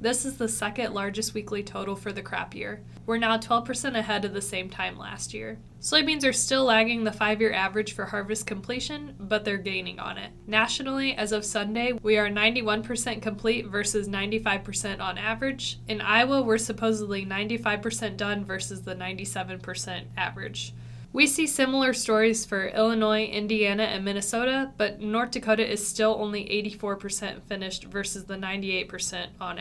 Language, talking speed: English, 160 wpm